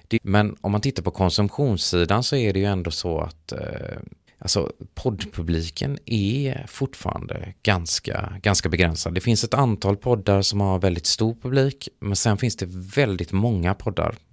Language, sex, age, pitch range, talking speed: Swedish, male, 30-49, 90-110 Hz, 160 wpm